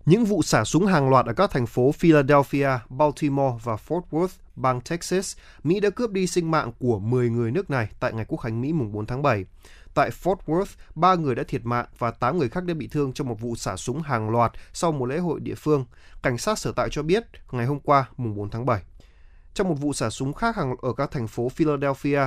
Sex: male